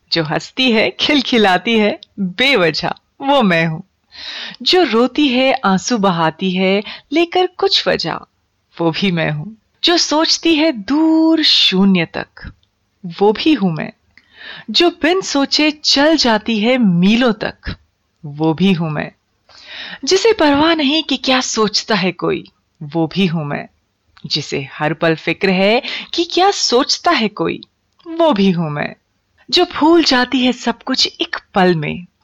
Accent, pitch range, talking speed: native, 165-275 Hz, 145 wpm